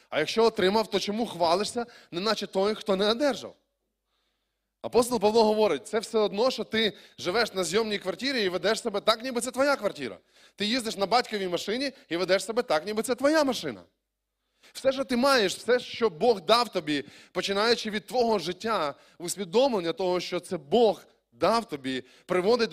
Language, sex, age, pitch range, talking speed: Ukrainian, male, 20-39, 170-230 Hz, 175 wpm